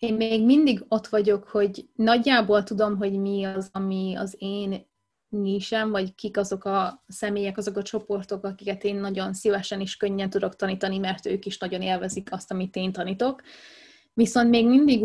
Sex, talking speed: female, 170 wpm